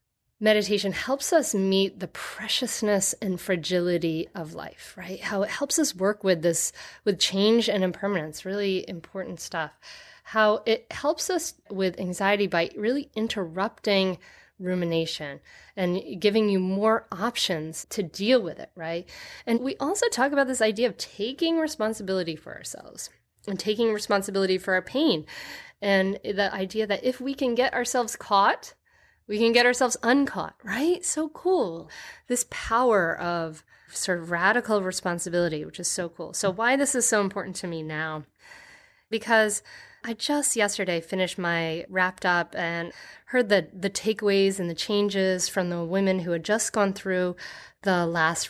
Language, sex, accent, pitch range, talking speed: English, female, American, 180-230 Hz, 155 wpm